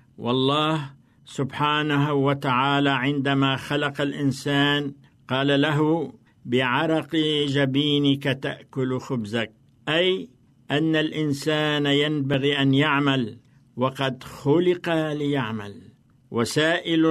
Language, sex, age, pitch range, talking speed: Arabic, male, 60-79, 125-145 Hz, 75 wpm